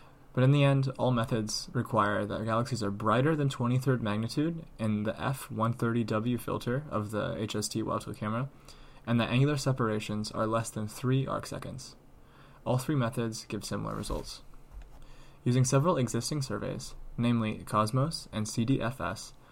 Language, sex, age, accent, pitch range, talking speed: English, male, 20-39, American, 110-130 Hz, 140 wpm